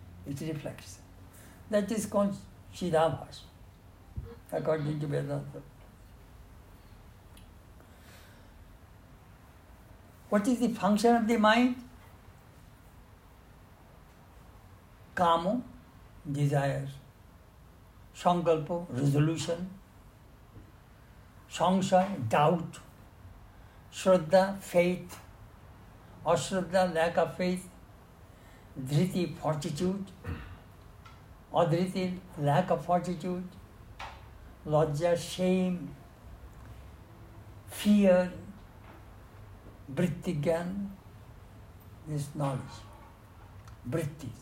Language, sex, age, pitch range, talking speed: English, male, 60-79, 100-165 Hz, 55 wpm